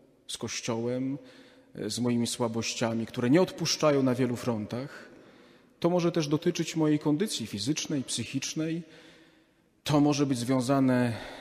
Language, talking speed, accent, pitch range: Polish, 120 wpm, native, 115-150 Hz